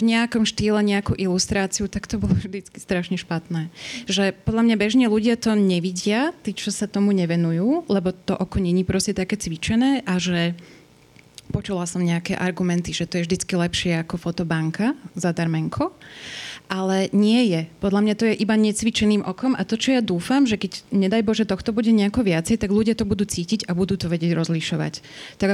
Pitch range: 175-215 Hz